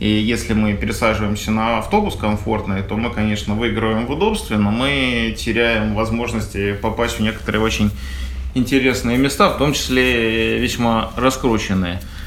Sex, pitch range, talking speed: male, 105-130 Hz, 135 wpm